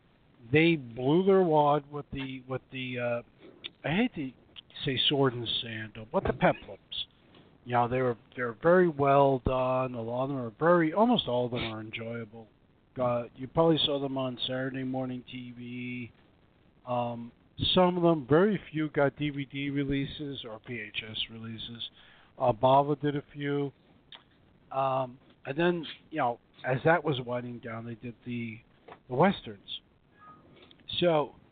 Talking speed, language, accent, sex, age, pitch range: 155 wpm, English, American, male, 50-69, 120-155 Hz